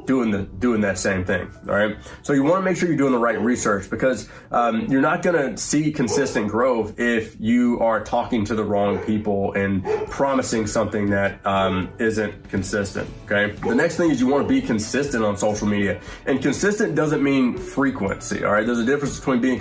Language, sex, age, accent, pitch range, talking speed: English, male, 20-39, American, 110-145 Hz, 200 wpm